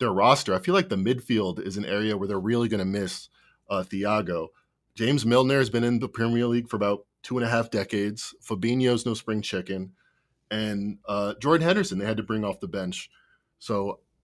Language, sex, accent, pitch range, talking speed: English, male, American, 105-130 Hz, 205 wpm